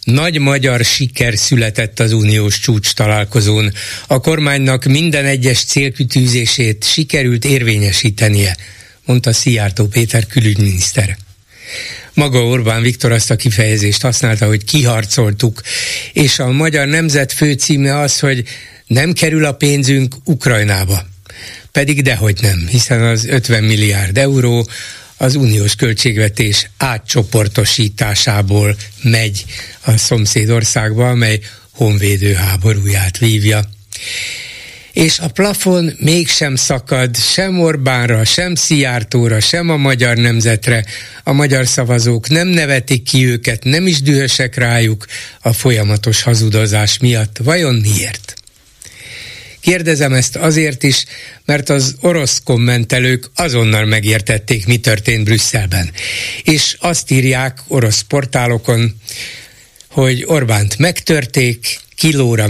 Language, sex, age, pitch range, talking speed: Hungarian, male, 60-79, 110-135 Hz, 105 wpm